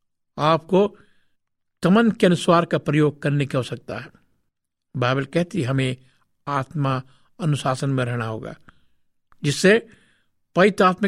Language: Hindi